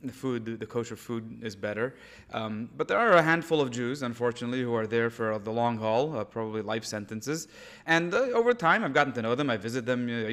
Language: English